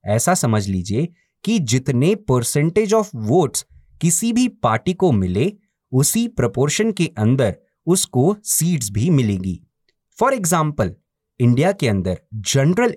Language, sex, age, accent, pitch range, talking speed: Hindi, male, 30-49, native, 115-175 Hz, 125 wpm